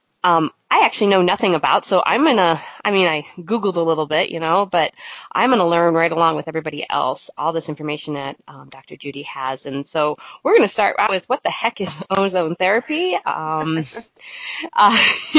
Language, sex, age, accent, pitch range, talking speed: English, female, 30-49, American, 160-210 Hz, 205 wpm